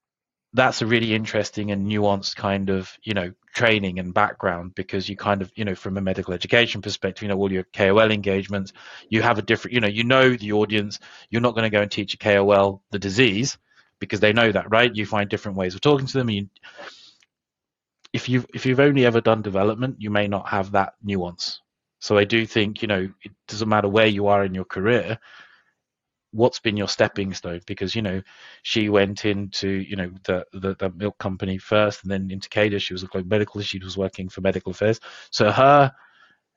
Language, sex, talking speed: English, male, 210 wpm